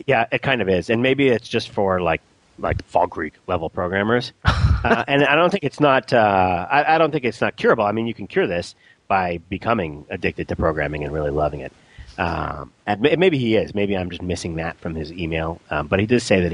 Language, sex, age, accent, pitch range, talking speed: English, male, 40-59, American, 85-115 Hz, 235 wpm